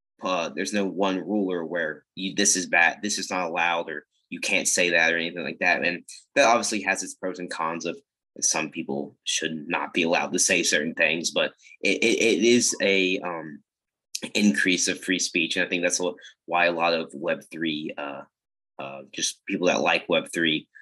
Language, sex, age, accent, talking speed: English, male, 20-39, American, 200 wpm